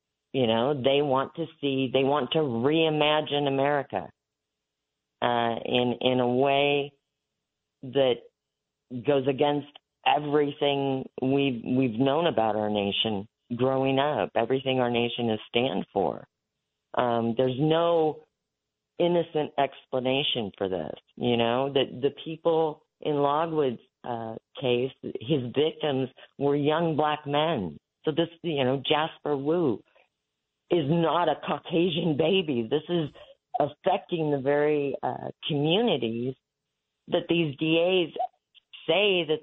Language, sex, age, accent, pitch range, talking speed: English, female, 40-59, American, 130-160 Hz, 120 wpm